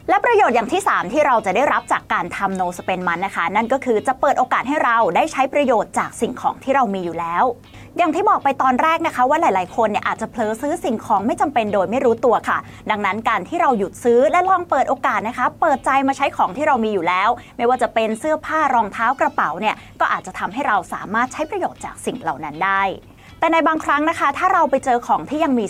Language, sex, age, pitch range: Thai, female, 20-39, 215-295 Hz